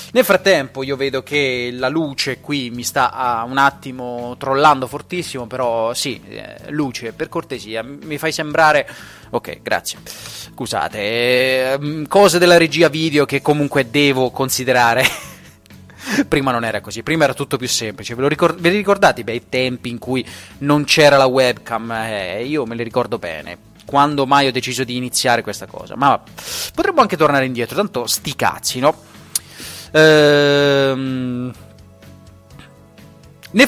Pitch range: 125-155 Hz